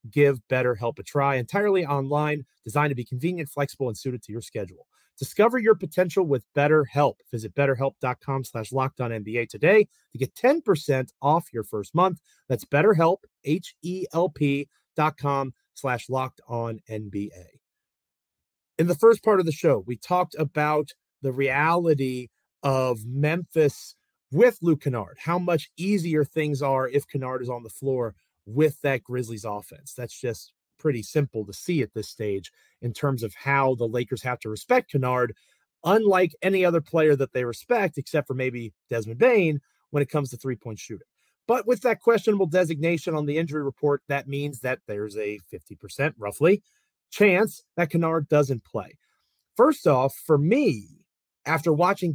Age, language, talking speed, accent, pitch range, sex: 30-49, English, 160 wpm, American, 125-165 Hz, male